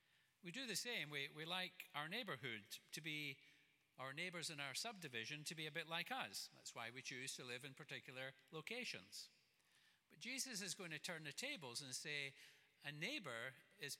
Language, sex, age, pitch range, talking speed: English, male, 50-69, 130-185 Hz, 190 wpm